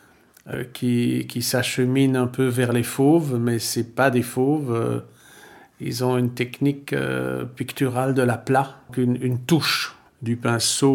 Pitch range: 115-140 Hz